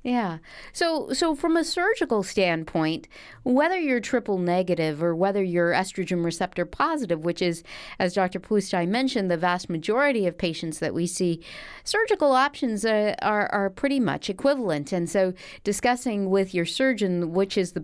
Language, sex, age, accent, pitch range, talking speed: English, female, 40-59, American, 180-245 Hz, 160 wpm